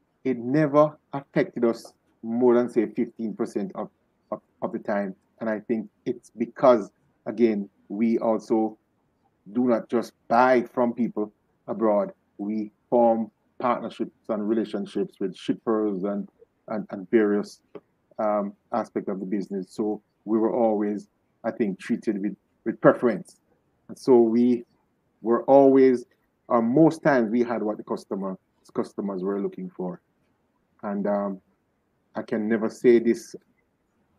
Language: English